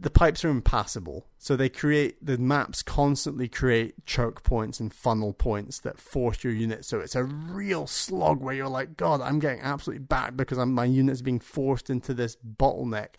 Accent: British